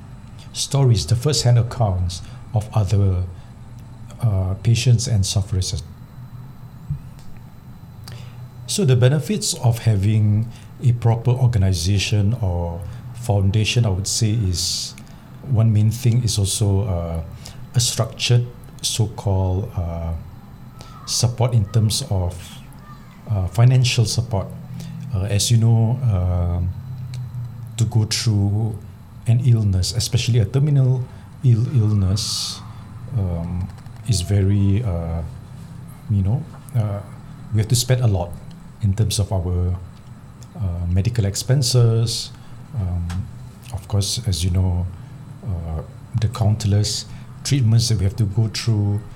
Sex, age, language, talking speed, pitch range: male, 60-79, English, 110 wpm, 100-125 Hz